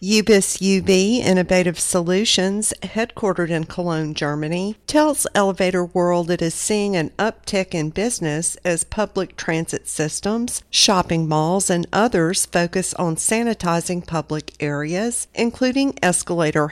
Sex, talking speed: female, 120 wpm